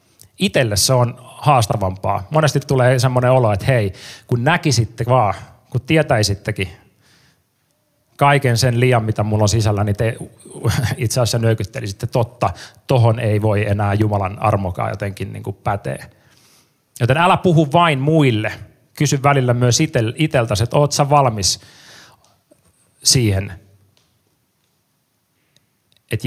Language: Finnish